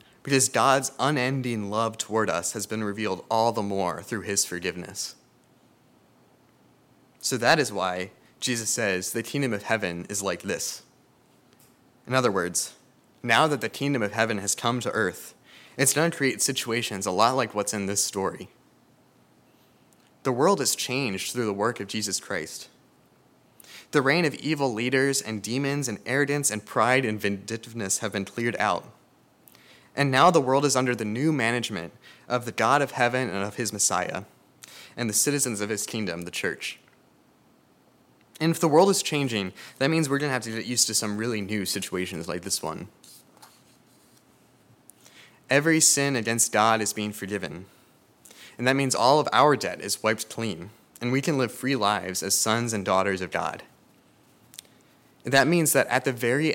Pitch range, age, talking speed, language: 105-135 Hz, 20-39, 175 wpm, English